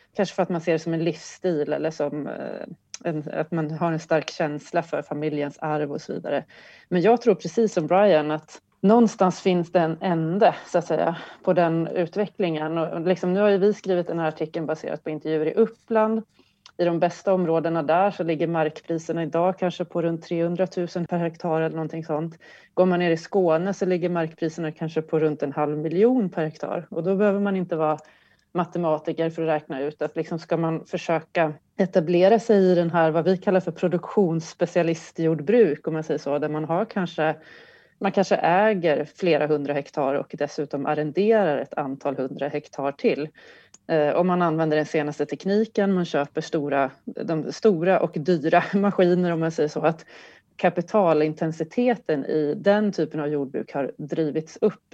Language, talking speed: Swedish, 175 wpm